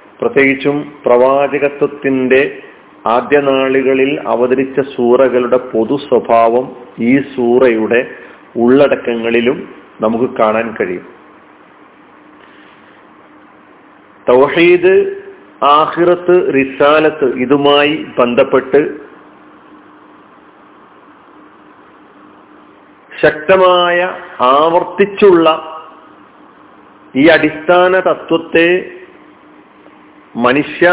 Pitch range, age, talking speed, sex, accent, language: 130-165 Hz, 40-59, 45 wpm, male, native, Malayalam